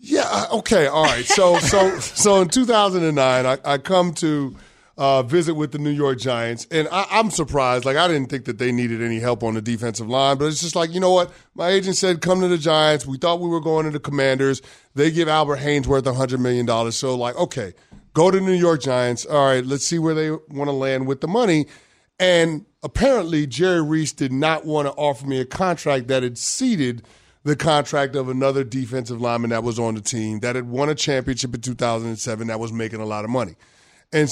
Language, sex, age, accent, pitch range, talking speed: English, male, 30-49, American, 125-160 Hz, 220 wpm